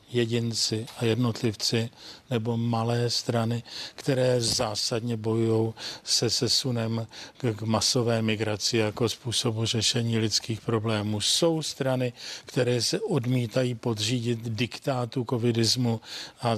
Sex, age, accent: male, 40-59, native